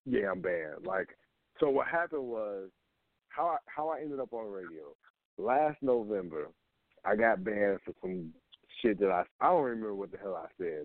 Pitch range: 100-140 Hz